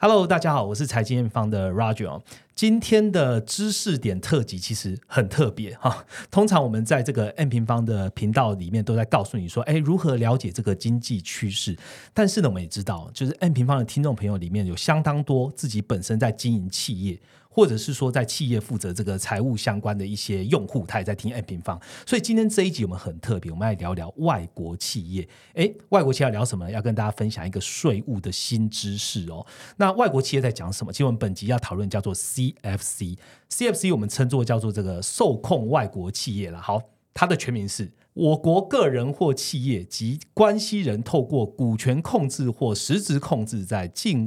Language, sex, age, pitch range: Chinese, male, 30-49, 105-150 Hz